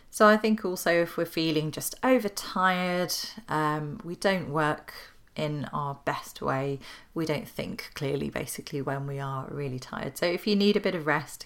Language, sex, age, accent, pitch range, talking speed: English, female, 30-49, British, 145-195 Hz, 185 wpm